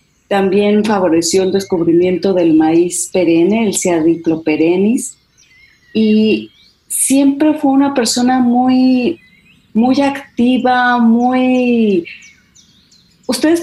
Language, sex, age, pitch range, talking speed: Spanish, female, 30-49, 190-255 Hz, 90 wpm